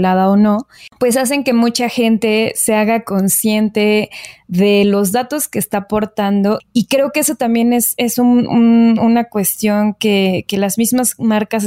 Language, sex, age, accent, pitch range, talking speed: Spanish, female, 20-39, Mexican, 195-230 Hz, 155 wpm